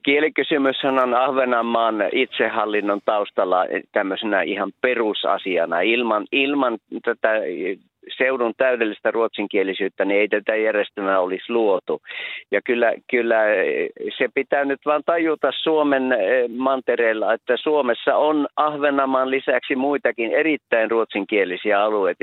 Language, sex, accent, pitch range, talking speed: Finnish, male, native, 110-155 Hz, 105 wpm